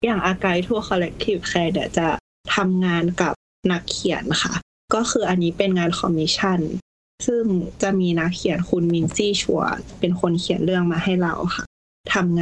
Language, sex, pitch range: Thai, female, 165-200 Hz